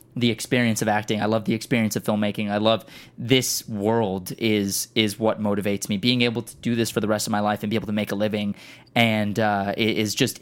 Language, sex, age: English, male, 20-39